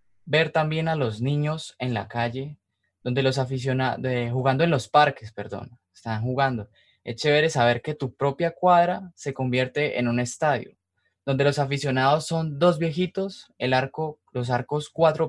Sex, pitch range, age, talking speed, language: male, 120-155 Hz, 20-39, 145 wpm, Spanish